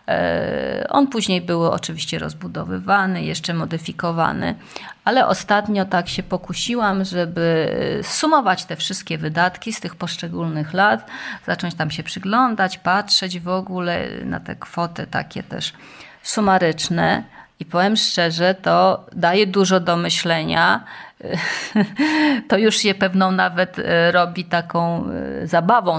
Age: 30-49